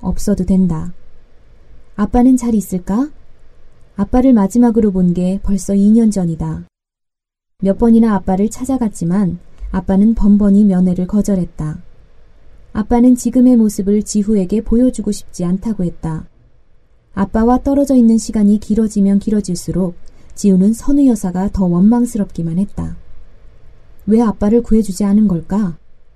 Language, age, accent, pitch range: Korean, 20-39, native, 185-230 Hz